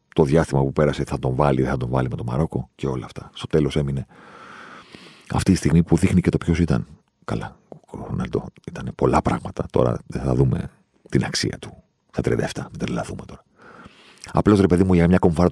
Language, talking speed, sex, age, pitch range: Greek, 210 wpm, male, 40-59, 70-85 Hz